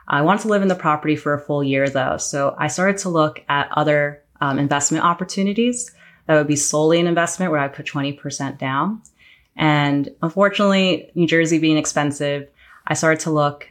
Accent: American